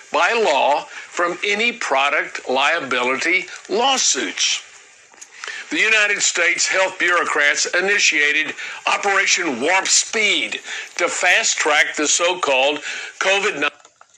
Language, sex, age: English, male, 60-79